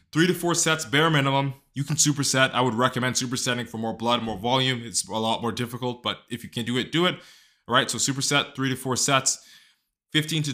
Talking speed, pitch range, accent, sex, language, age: 235 wpm, 115-135 Hz, American, male, English, 20-39